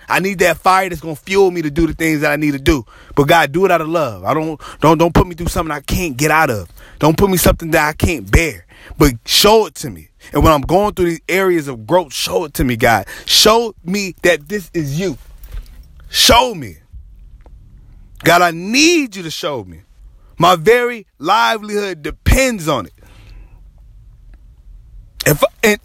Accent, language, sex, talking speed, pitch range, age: American, English, male, 205 wpm, 115-175 Hz, 30-49